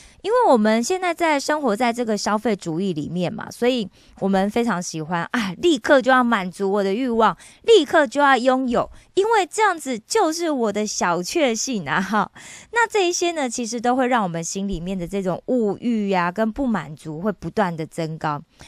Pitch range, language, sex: 190-275 Hz, Korean, female